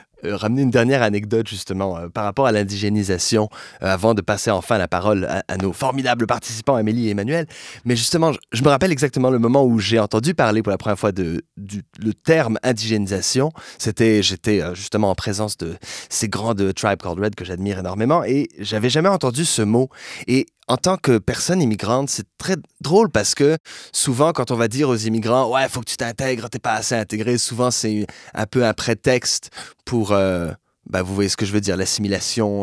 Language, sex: French, male